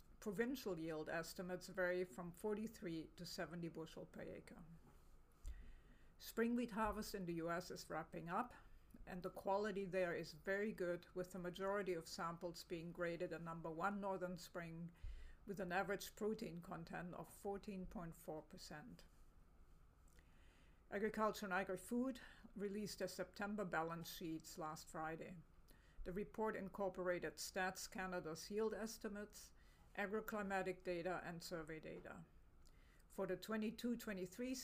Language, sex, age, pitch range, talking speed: English, female, 50-69, 170-205 Hz, 125 wpm